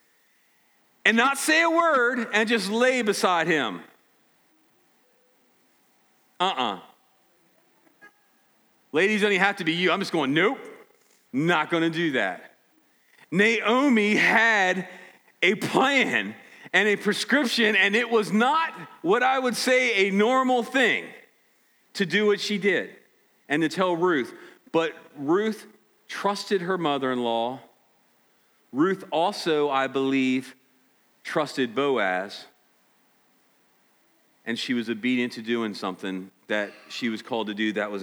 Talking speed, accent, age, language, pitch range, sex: 130 wpm, American, 40-59, English, 170-250 Hz, male